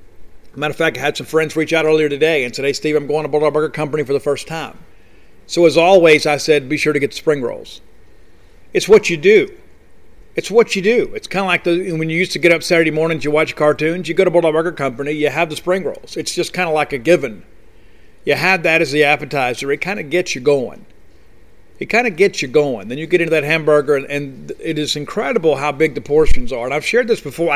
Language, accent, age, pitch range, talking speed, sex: English, American, 50-69, 145-170 Hz, 255 wpm, male